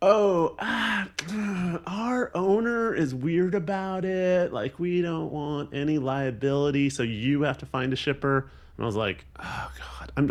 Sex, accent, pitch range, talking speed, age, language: male, American, 105-150 Hz, 165 wpm, 30-49, English